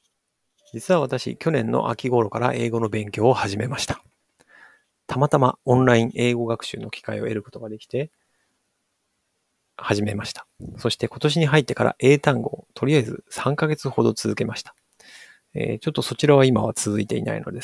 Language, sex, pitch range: Japanese, male, 110-140 Hz